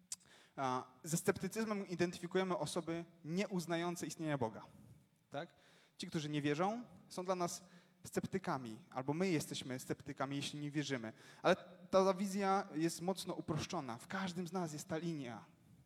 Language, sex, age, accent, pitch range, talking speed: Polish, male, 20-39, native, 140-185 Hz, 135 wpm